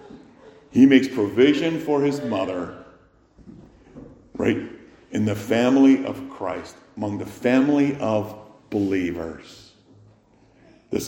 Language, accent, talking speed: English, American, 95 wpm